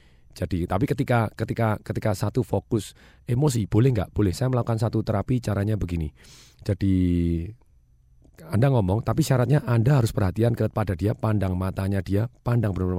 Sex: male